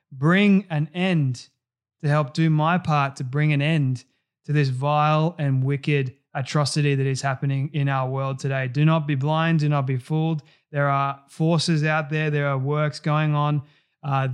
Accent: Australian